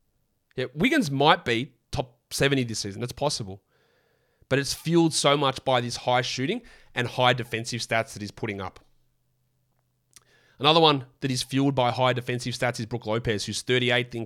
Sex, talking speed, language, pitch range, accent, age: male, 175 wpm, English, 115-135 Hz, Australian, 30-49